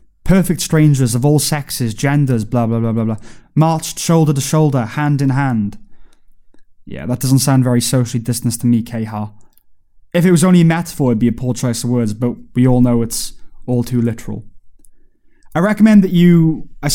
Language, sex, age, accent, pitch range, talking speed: English, male, 20-39, British, 120-155 Hz, 190 wpm